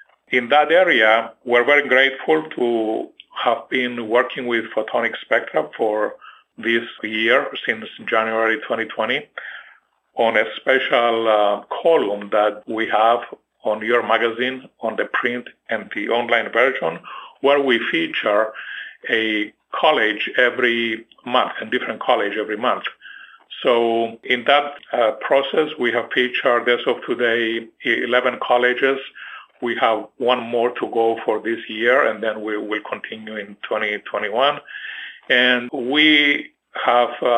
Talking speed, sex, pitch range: 130 wpm, male, 115-130 Hz